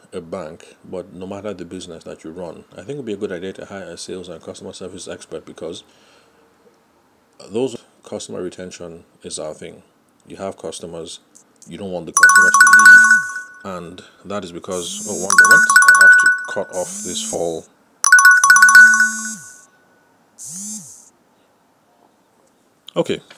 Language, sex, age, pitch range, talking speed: English, male, 30-49, 85-145 Hz, 145 wpm